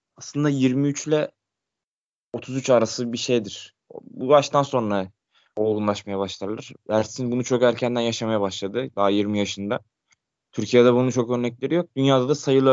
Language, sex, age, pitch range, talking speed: Turkish, male, 20-39, 105-135 Hz, 135 wpm